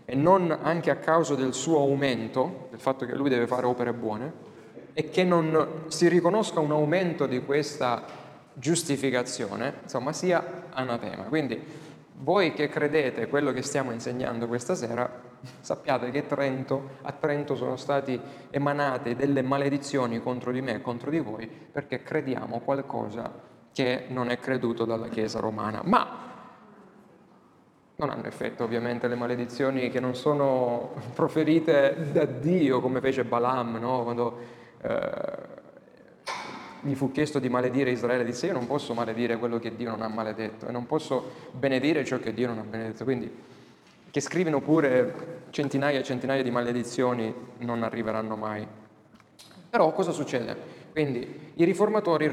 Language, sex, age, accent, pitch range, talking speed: Italian, male, 30-49, native, 120-150 Hz, 150 wpm